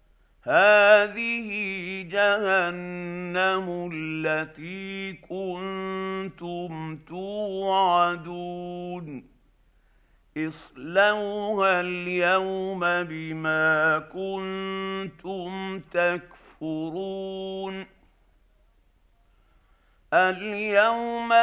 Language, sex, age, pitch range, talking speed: Arabic, male, 50-69, 155-190 Hz, 30 wpm